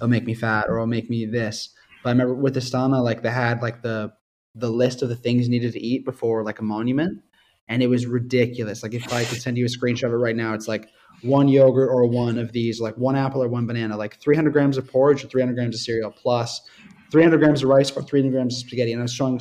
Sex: male